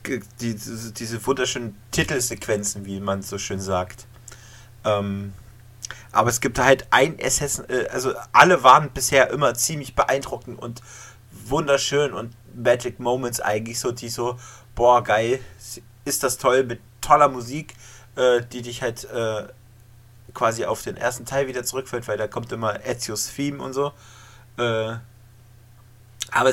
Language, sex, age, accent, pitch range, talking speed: German, male, 30-49, German, 115-130 Hz, 140 wpm